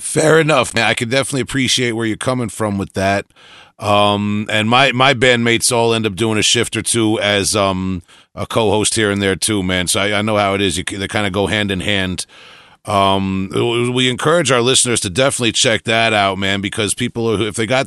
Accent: American